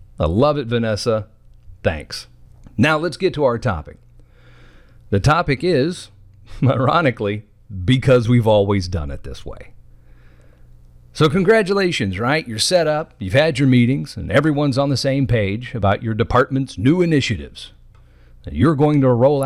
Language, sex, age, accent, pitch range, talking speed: English, male, 50-69, American, 95-145 Hz, 145 wpm